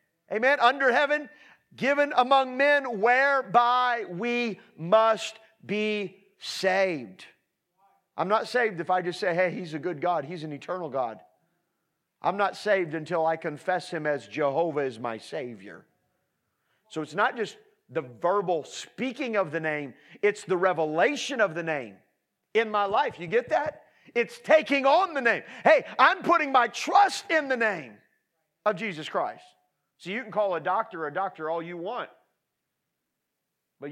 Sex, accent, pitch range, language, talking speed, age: male, American, 165-235 Hz, English, 160 wpm, 40-59